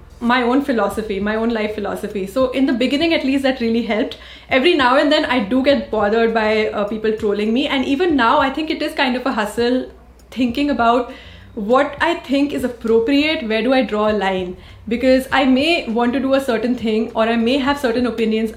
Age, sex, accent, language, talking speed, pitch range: 20-39, female, Indian, English, 220 wpm, 225-290 Hz